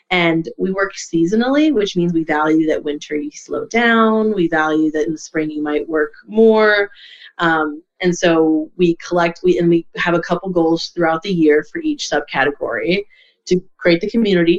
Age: 20-39